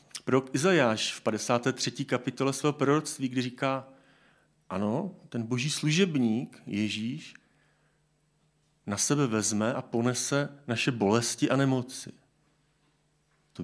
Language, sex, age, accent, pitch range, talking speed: Czech, male, 40-59, native, 110-145 Hz, 105 wpm